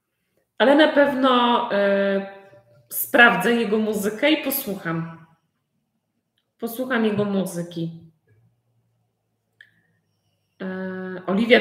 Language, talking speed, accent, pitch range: Polish, 60 wpm, native, 185-255 Hz